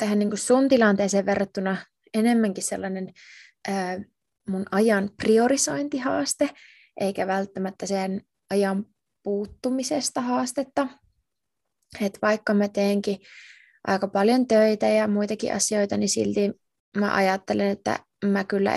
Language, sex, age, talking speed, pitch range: Finnish, female, 20-39, 95 wpm, 195-225 Hz